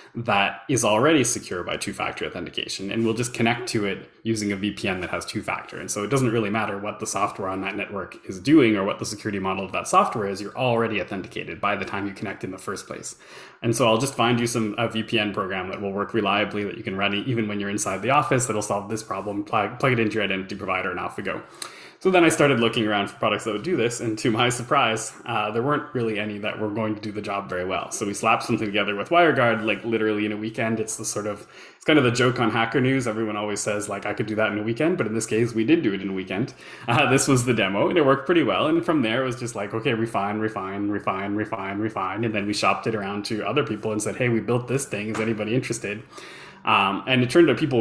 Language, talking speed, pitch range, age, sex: English, 275 wpm, 100-120 Hz, 20-39, male